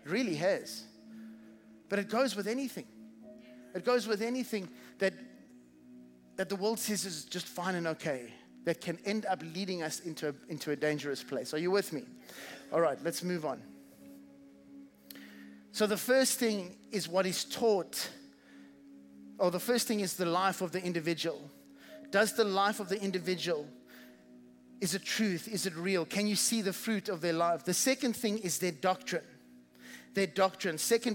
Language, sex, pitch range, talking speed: English, male, 155-225 Hz, 175 wpm